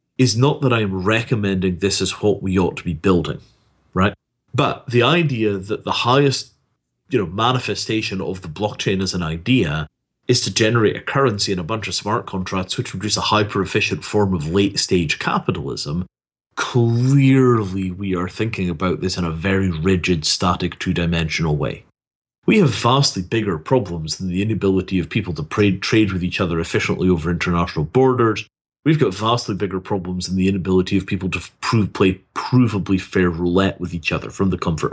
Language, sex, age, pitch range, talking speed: English, male, 40-59, 90-115 Hz, 170 wpm